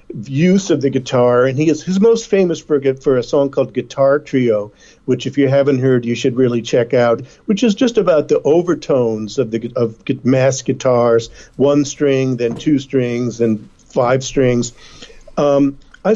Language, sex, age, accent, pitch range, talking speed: English, male, 50-69, American, 125-155 Hz, 180 wpm